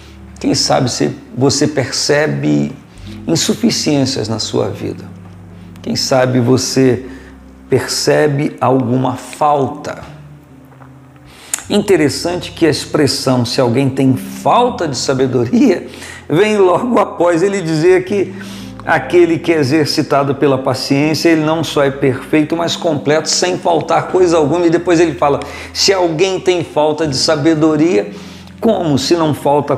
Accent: Brazilian